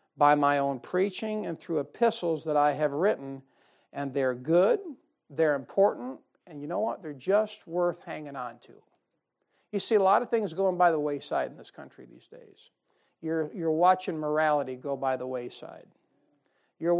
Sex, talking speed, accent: male, 175 wpm, American